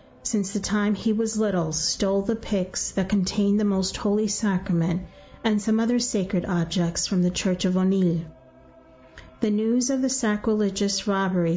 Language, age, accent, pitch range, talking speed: English, 40-59, American, 180-220 Hz, 160 wpm